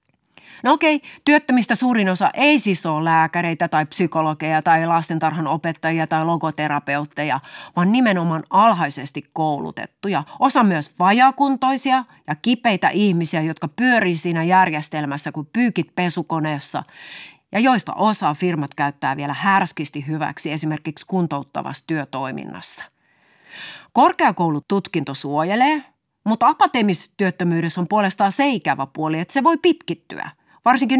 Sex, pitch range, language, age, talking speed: female, 160-250 Hz, Finnish, 30-49, 110 wpm